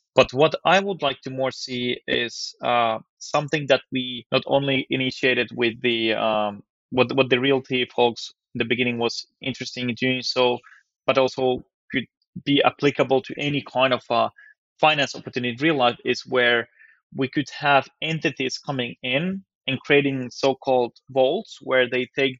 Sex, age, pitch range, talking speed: male, 20-39, 125-150 Hz, 165 wpm